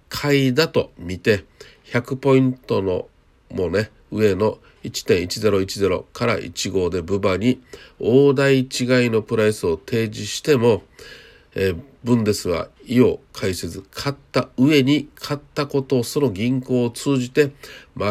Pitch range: 105-135 Hz